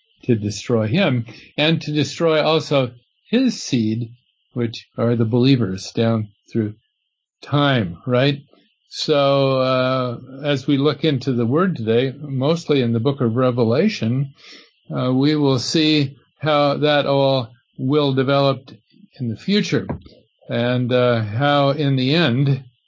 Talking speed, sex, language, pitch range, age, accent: 130 wpm, male, English, 120-140 Hz, 50-69, American